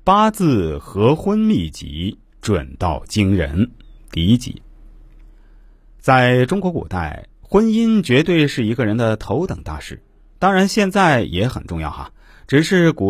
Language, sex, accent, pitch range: Chinese, male, native, 95-160 Hz